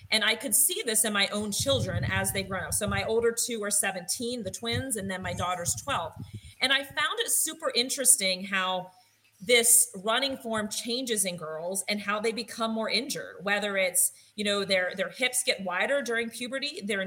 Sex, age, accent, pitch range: female, 30-49, American, 190-230 Hz